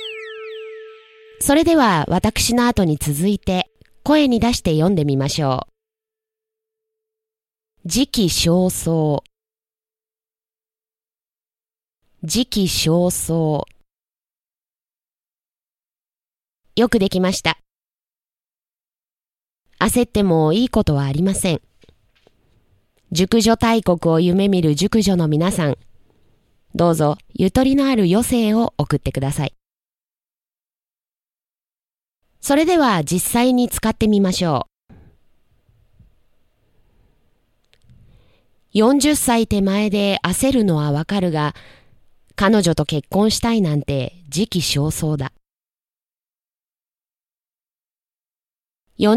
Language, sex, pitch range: Chinese, female, 155-240 Hz